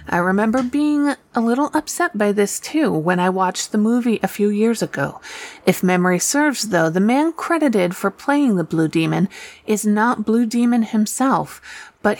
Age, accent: 30-49, American